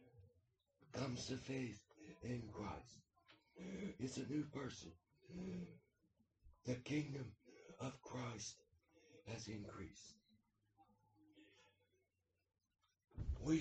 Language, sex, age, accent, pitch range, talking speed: English, male, 60-79, American, 100-140 Hz, 70 wpm